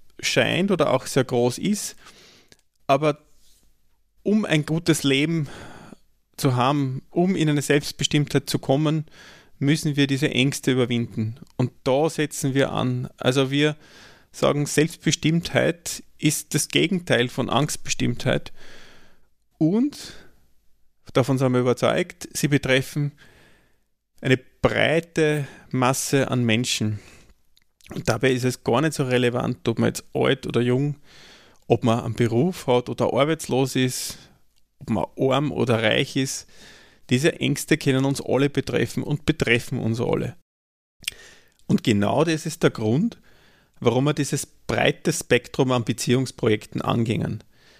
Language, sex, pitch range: German, male, 125-150 Hz